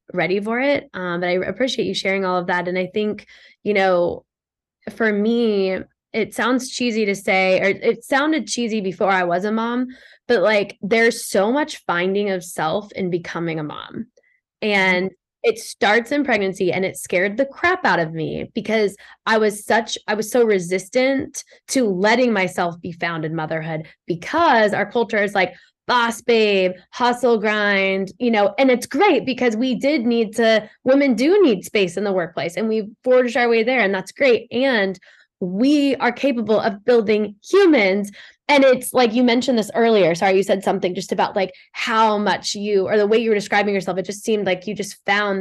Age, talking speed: 10-29, 195 wpm